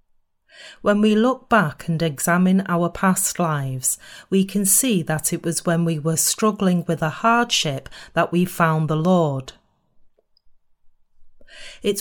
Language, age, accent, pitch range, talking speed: English, 30-49, British, 160-200 Hz, 140 wpm